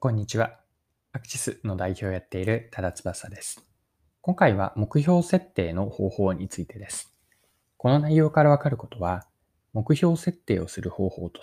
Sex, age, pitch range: male, 20-39, 95-145 Hz